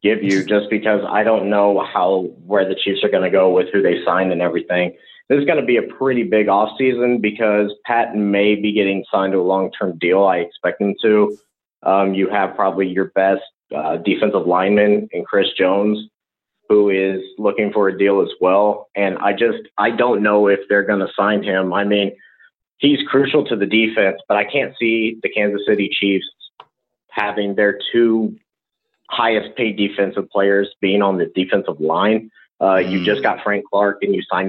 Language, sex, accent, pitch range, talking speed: English, male, American, 95-110 Hz, 195 wpm